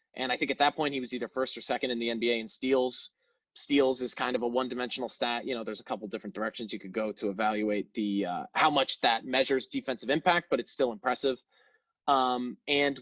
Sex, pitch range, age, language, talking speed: male, 120-145 Hz, 20-39, English, 230 wpm